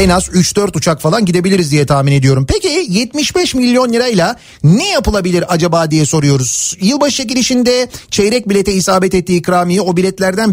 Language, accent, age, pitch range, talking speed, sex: Turkish, native, 40-59, 170-215 Hz, 155 wpm, male